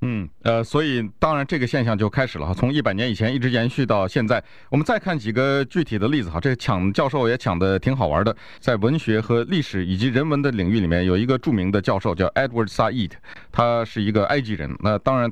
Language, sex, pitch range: Chinese, male, 100-140 Hz